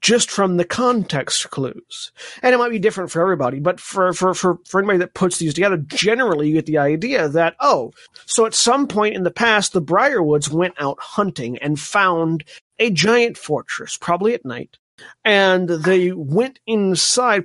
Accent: American